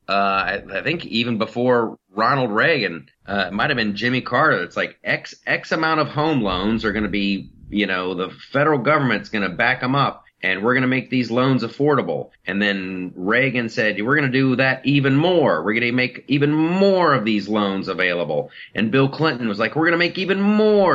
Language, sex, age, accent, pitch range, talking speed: English, male, 40-59, American, 110-150 Hz, 220 wpm